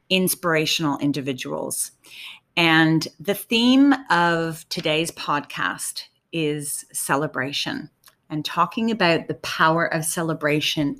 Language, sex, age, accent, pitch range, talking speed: English, female, 40-59, American, 145-175 Hz, 95 wpm